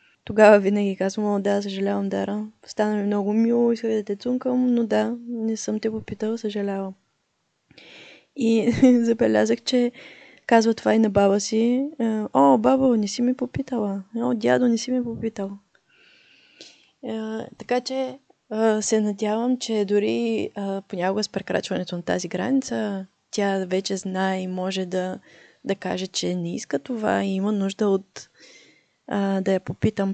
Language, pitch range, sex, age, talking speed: Bulgarian, 190-235 Hz, female, 20-39, 145 wpm